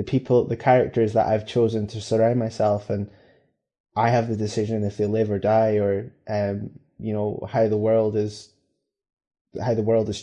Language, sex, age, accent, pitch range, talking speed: English, male, 20-39, British, 105-115 Hz, 190 wpm